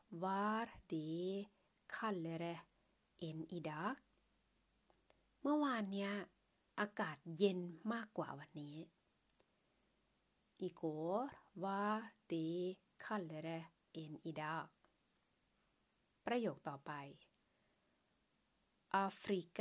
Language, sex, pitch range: Thai, female, 170-215 Hz